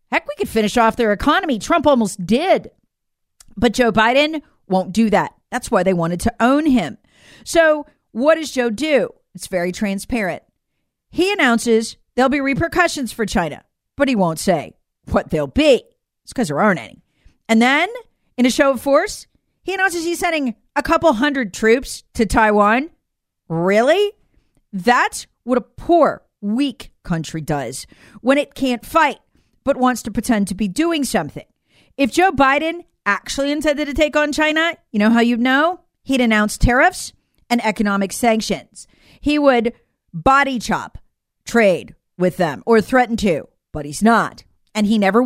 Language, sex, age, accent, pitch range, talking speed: English, female, 40-59, American, 210-290 Hz, 165 wpm